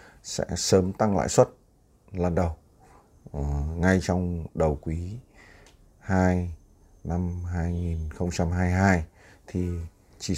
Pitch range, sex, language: 85-110 Hz, male, Vietnamese